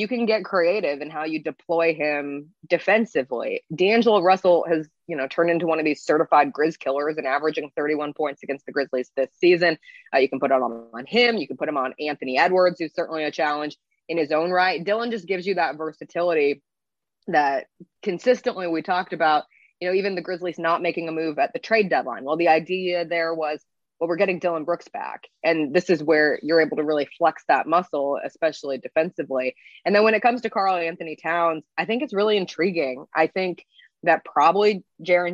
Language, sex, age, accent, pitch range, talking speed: English, female, 20-39, American, 150-185 Hz, 205 wpm